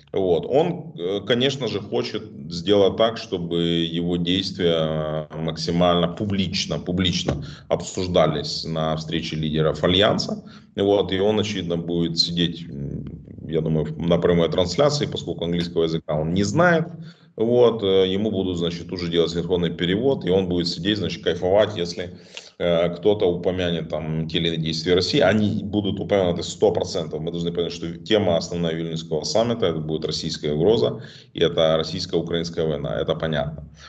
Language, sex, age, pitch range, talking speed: Russian, male, 30-49, 80-95 Hz, 140 wpm